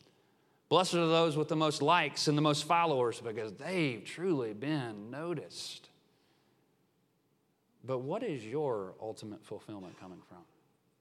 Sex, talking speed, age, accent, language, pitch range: male, 130 wpm, 40-59, American, English, 130-170 Hz